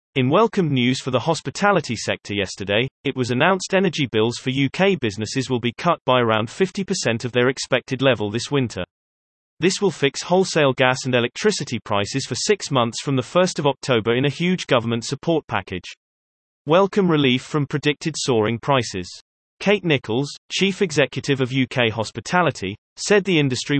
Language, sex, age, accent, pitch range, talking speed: English, male, 30-49, British, 115-155 Hz, 160 wpm